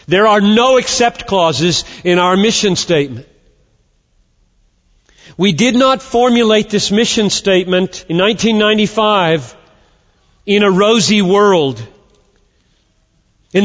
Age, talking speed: 40-59, 100 wpm